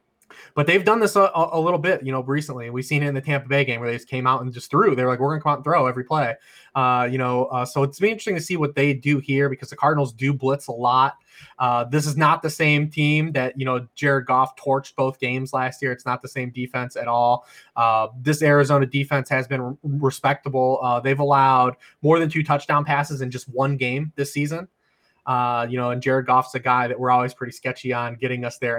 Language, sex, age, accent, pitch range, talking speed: English, male, 20-39, American, 130-150 Hz, 255 wpm